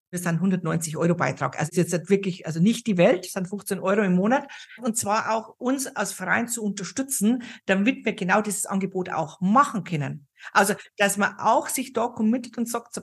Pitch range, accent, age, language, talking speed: 185-235 Hz, German, 50-69, German, 200 wpm